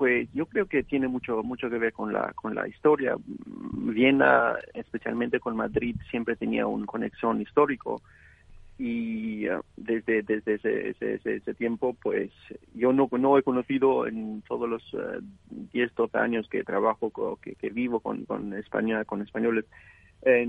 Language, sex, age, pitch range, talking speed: English, male, 40-59, 115-140 Hz, 165 wpm